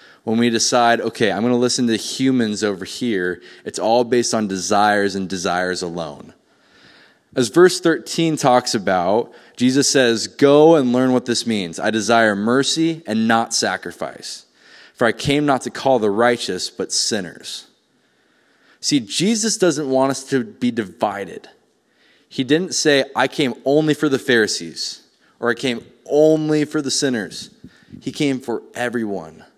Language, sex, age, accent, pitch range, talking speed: English, male, 20-39, American, 115-145 Hz, 155 wpm